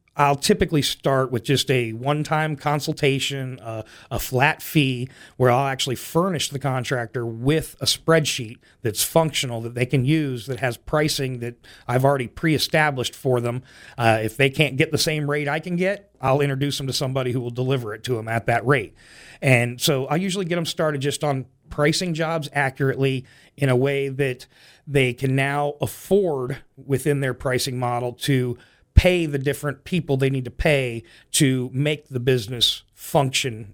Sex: male